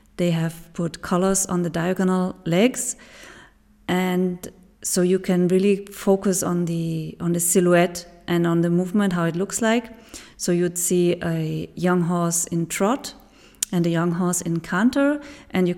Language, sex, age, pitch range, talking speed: English, female, 30-49, 170-195 Hz, 165 wpm